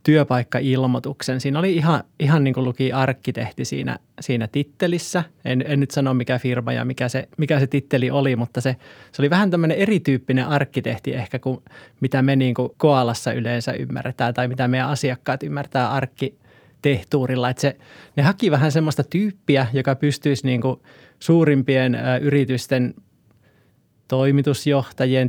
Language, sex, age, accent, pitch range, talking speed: Finnish, male, 20-39, native, 125-145 Hz, 145 wpm